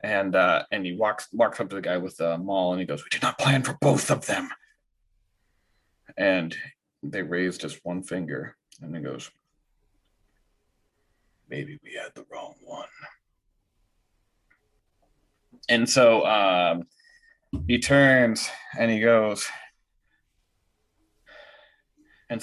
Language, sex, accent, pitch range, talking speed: English, male, American, 90-140 Hz, 130 wpm